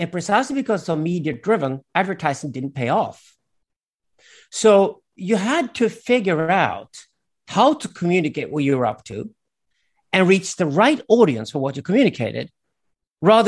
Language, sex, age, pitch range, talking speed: English, male, 50-69, 135-195 Hz, 150 wpm